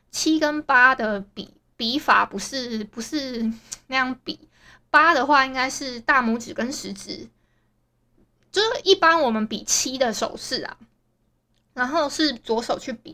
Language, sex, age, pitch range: Chinese, female, 20-39, 225-295 Hz